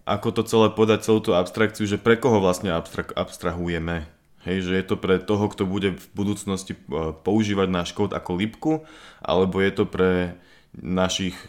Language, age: Slovak, 20-39